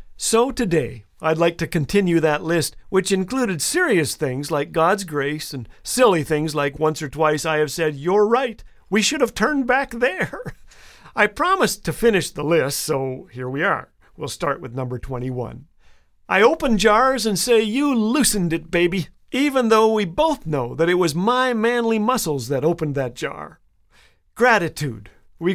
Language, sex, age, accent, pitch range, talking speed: English, male, 50-69, American, 150-220 Hz, 175 wpm